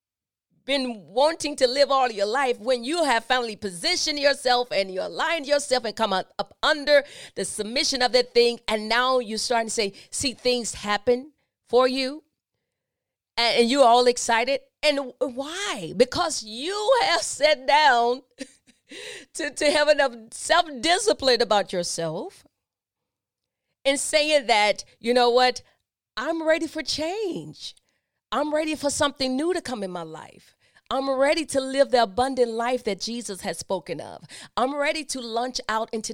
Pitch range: 220-295 Hz